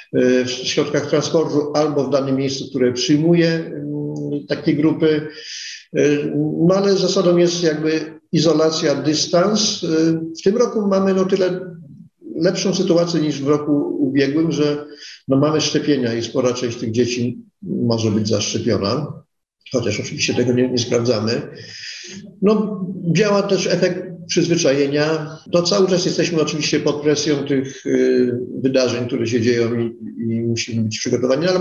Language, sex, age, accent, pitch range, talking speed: Polish, male, 50-69, native, 125-170 Hz, 140 wpm